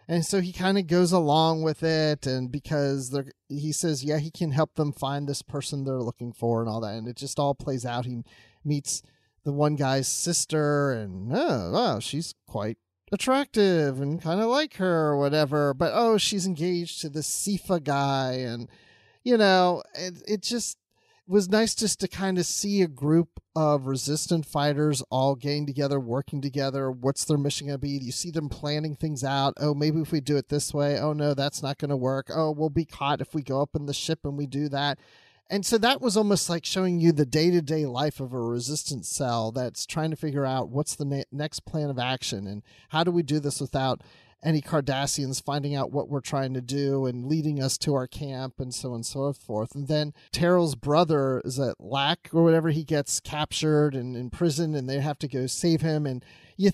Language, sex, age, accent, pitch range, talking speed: English, male, 30-49, American, 135-160 Hz, 220 wpm